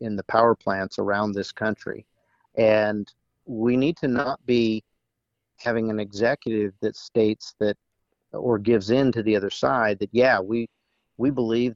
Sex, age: male, 50-69